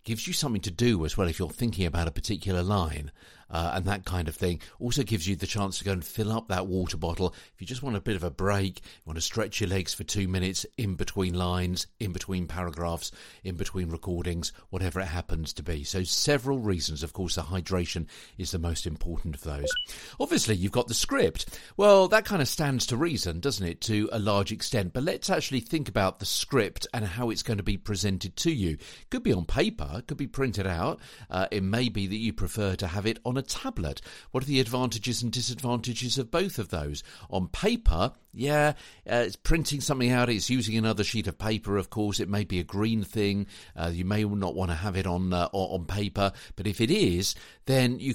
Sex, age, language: male, 50-69, English